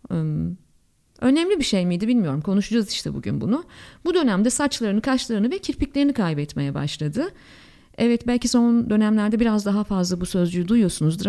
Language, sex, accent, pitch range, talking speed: Turkish, female, native, 185-260 Hz, 145 wpm